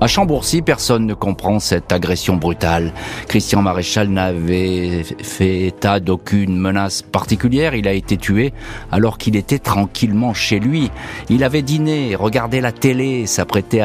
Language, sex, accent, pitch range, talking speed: French, male, French, 95-125 Hz, 145 wpm